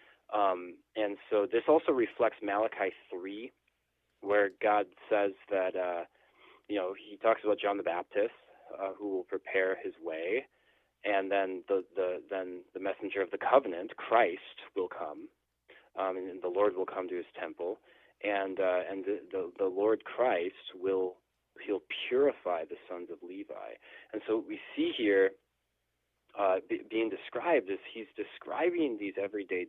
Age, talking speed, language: 20-39, 160 wpm, English